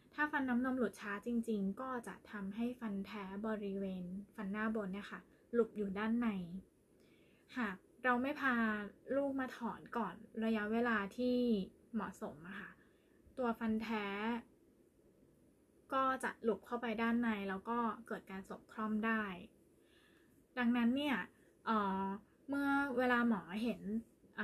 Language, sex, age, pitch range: Thai, female, 20-39, 205-240 Hz